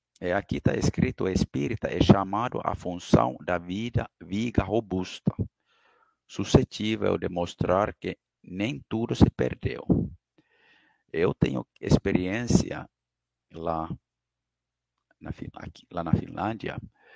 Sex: male